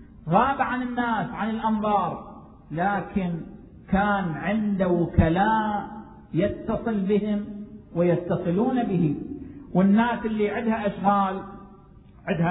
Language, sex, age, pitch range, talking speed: Arabic, male, 50-69, 190-230 Hz, 85 wpm